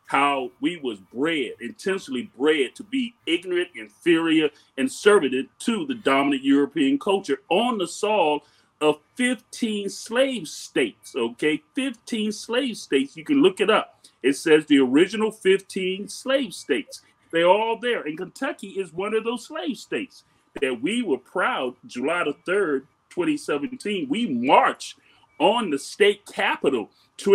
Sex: male